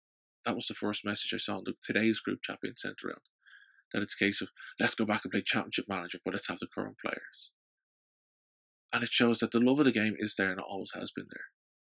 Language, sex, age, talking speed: English, male, 20-39, 250 wpm